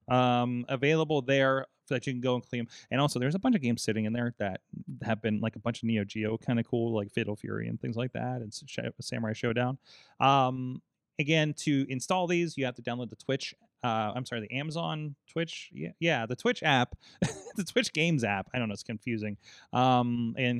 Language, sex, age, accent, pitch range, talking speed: English, male, 30-49, American, 115-140 Hz, 220 wpm